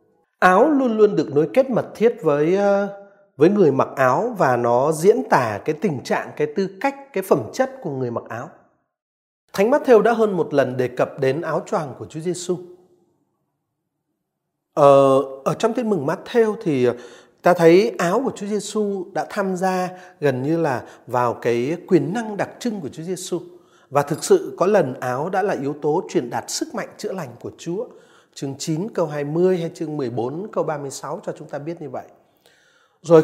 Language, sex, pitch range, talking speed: Vietnamese, male, 150-215 Hz, 195 wpm